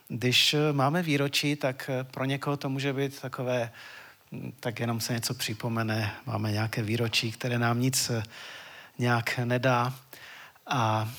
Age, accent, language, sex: 40-59, native, Czech, male